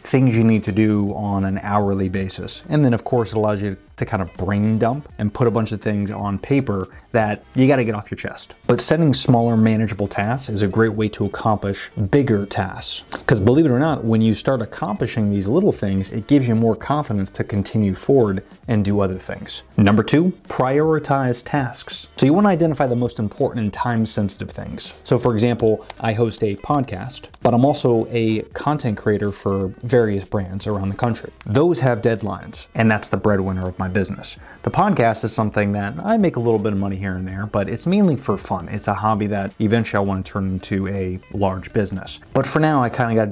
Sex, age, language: male, 30-49, English